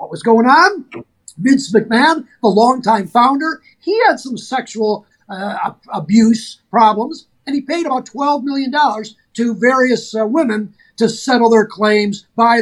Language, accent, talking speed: English, American, 145 wpm